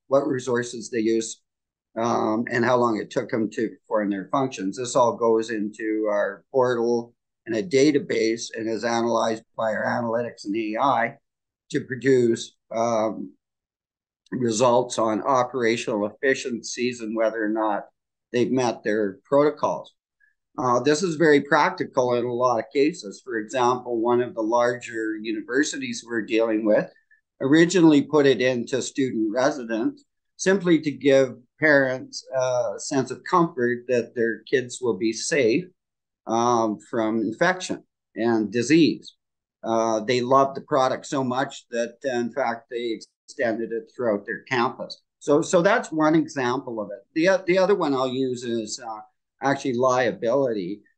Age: 50-69